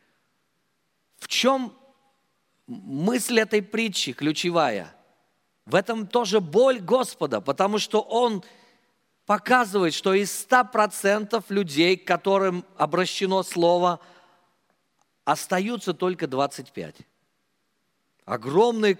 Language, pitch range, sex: Russian, 175-225 Hz, male